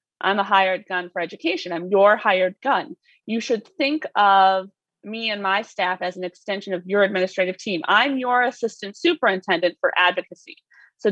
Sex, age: female, 30-49